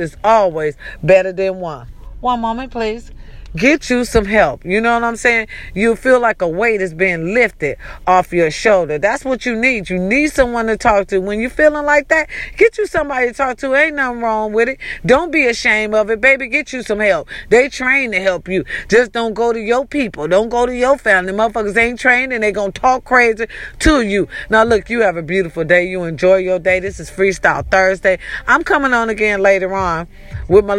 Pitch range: 185-235 Hz